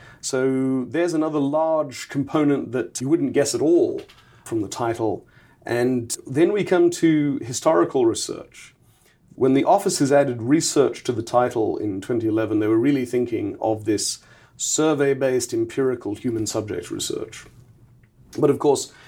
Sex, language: male, English